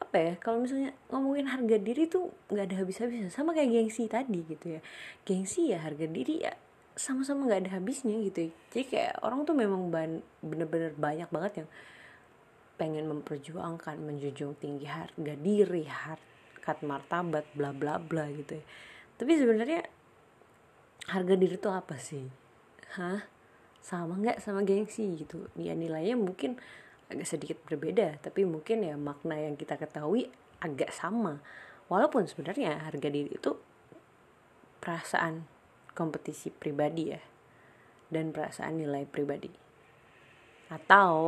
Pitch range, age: 150-205 Hz, 20-39